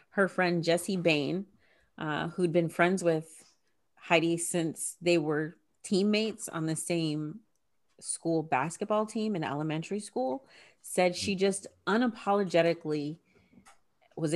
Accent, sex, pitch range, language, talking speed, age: American, female, 150-190 Hz, English, 115 wpm, 30-49